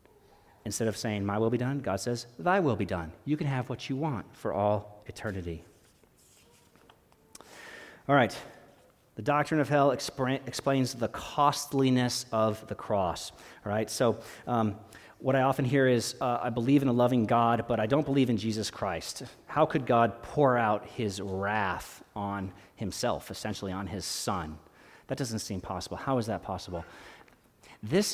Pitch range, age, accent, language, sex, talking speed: 100-135 Hz, 40-59, American, English, male, 170 wpm